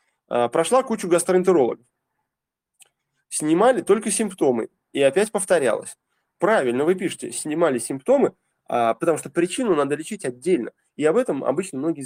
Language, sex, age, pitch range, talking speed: Russian, male, 20-39, 155-235 Hz, 125 wpm